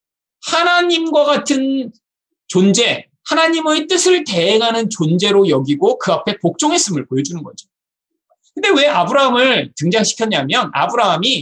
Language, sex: Korean, male